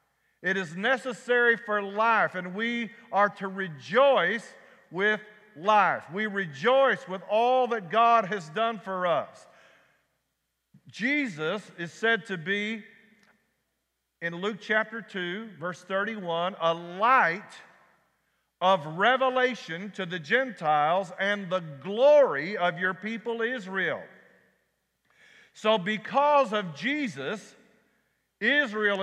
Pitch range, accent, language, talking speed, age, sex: 175-235 Hz, American, English, 110 wpm, 50-69, male